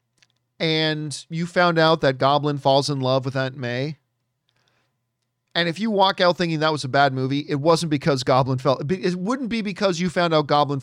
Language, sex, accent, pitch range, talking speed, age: English, male, American, 130-205 Hz, 200 wpm, 40-59